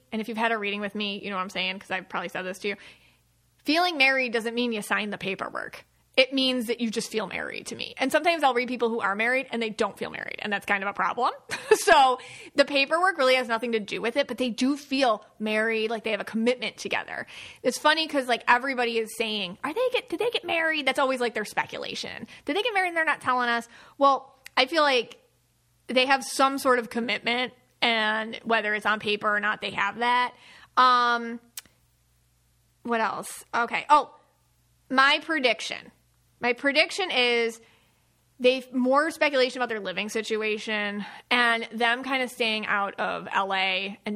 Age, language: 30-49, English